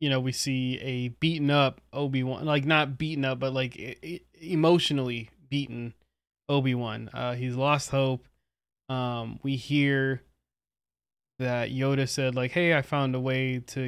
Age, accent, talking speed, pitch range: 20-39, American, 145 wpm, 125-145 Hz